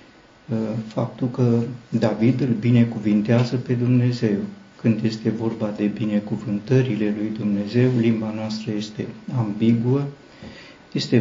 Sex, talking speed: male, 100 wpm